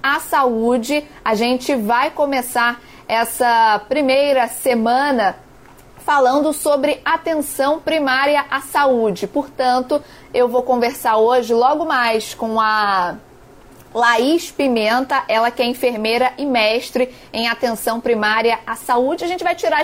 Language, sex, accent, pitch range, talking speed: Portuguese, female, Brazilian, 220-275 Hz, 125 wpm